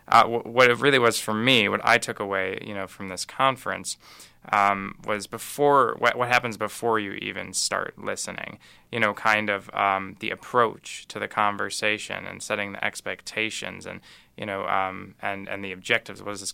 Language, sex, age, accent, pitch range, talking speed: English, male, 20-39, American, 100-110 Hz, 190 wpm